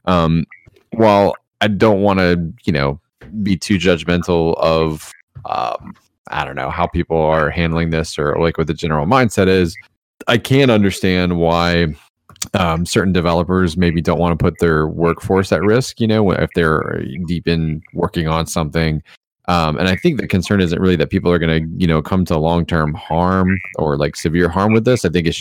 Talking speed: 190 wpm